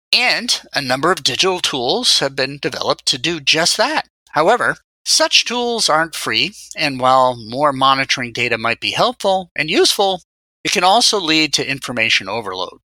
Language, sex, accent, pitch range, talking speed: English, male, American, 125-170 Hz, 160 wpm